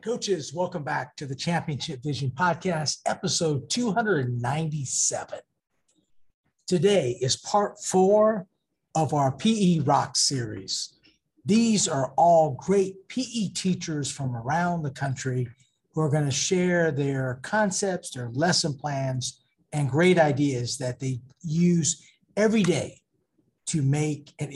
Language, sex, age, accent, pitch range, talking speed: English, male, 50-69, American, 135-180 Hz, 120 wpm